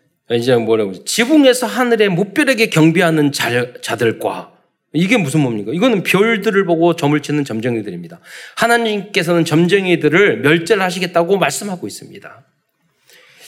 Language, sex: Korean, male